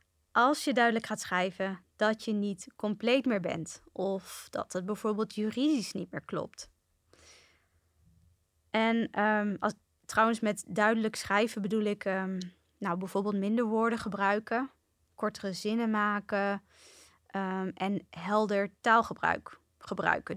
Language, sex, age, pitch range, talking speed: Dutch, female, 20-39, 185-220 Hz, 110 wpm